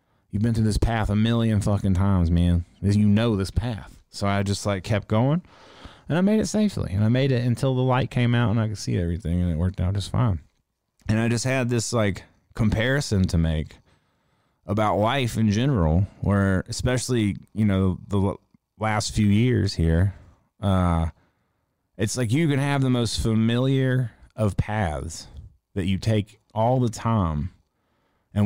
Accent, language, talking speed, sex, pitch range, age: American, English, 180 wpm, male, 95-125 Hz, 30-49